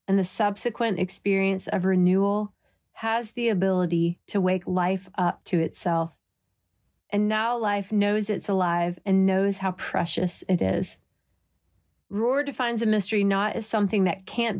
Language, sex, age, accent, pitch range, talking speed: English, female, 30-49, American, 175-210 Hz, 150 wpm